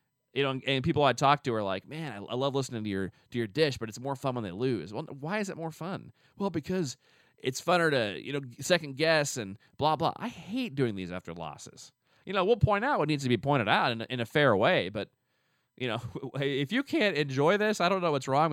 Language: English